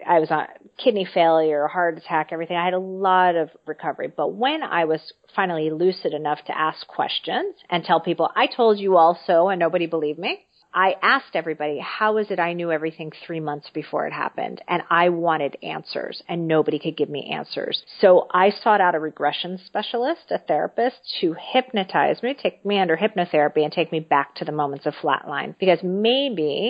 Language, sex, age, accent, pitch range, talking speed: English, female, 40-59, American, 160-195 Hz, 195 wpm